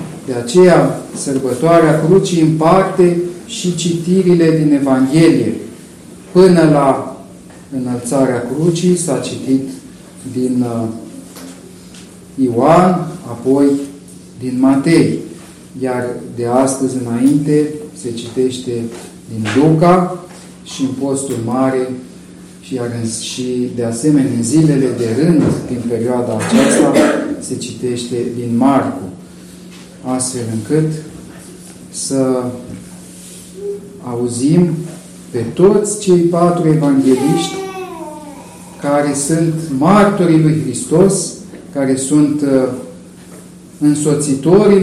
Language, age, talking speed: Romanian, 40-59, 85 wpm